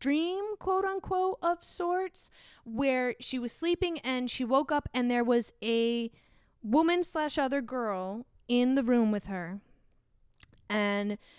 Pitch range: 205-250 Hz